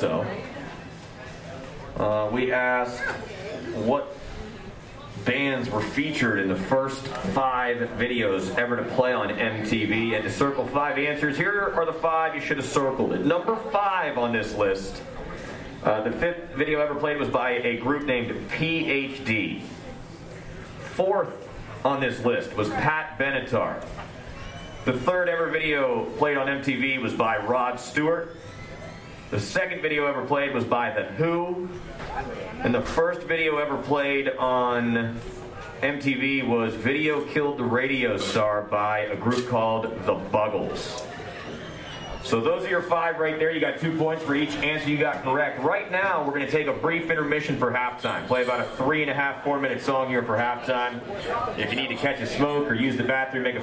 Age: 40-59